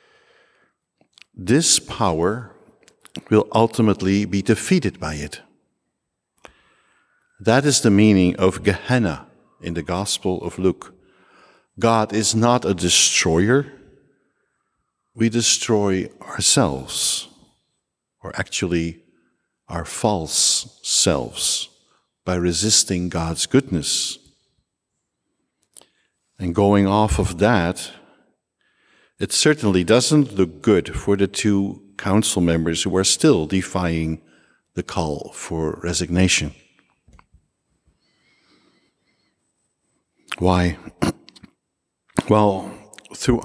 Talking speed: 85 wpm